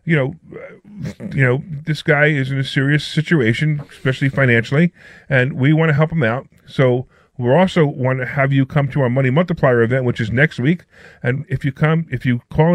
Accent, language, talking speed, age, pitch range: American, English, 205 wpm, 40-59, 135-165 Hz